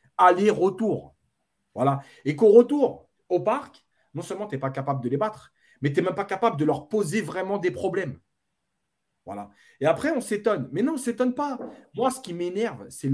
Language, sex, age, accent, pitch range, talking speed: French, male, 30-49, French, 140-210 Hz, 200 wpm